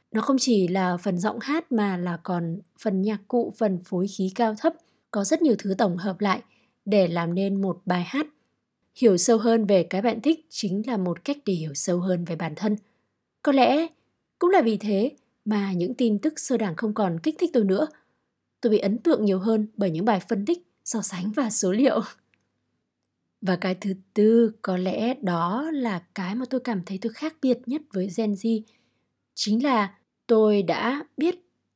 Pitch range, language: 190-240 Hz, Vietnamese